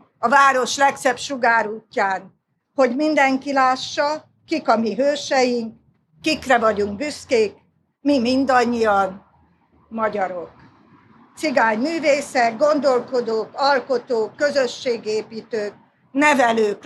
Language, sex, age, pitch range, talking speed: Hungarian, female, 50-69, 220-280 Hz, 80 wpm